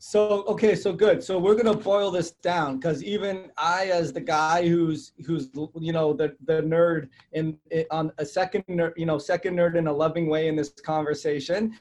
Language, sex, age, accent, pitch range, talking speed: English, male, 20-39, American, 155-170 Hz, 205 wpm